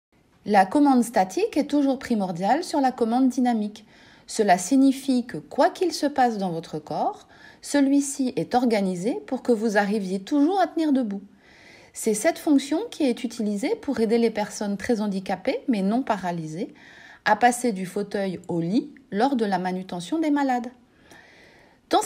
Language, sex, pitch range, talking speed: French, female, 205-285 Hz, 160 wpm